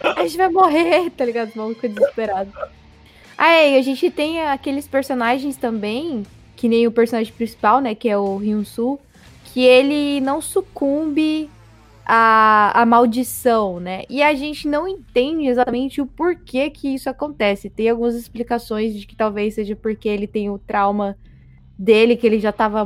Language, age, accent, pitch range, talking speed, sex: Portuguese, 20-39, Brazilian, 210-275 Hz, 170 wpm, female